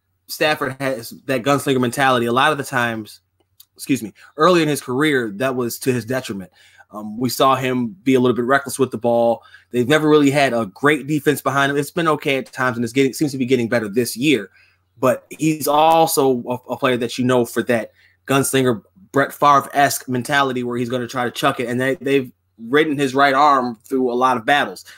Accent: American